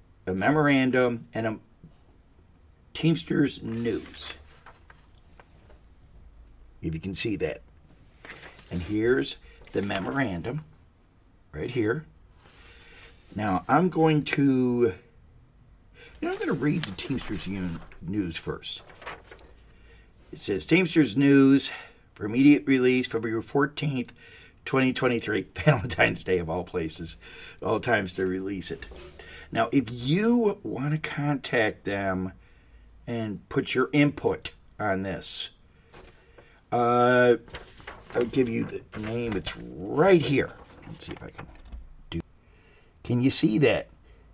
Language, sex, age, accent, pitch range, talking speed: English, male, 50-69, American, 90-135 Hz, 110 wpm